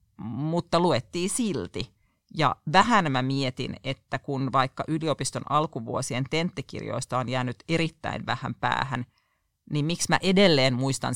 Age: 40-59